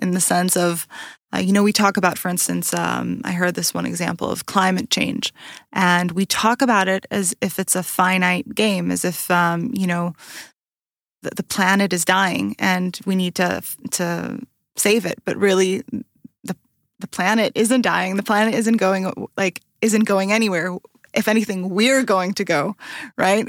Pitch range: 180-210 Hz